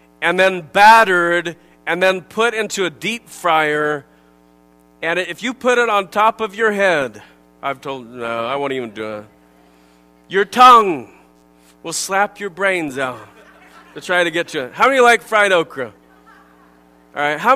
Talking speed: 165 wpm